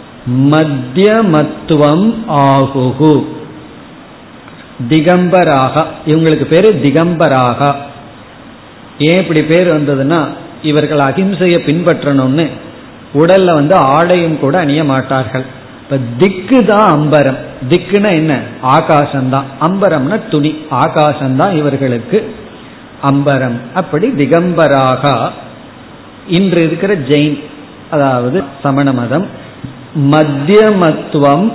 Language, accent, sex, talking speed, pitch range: Tamil, native, male, 65 wpm, 135-170 Hz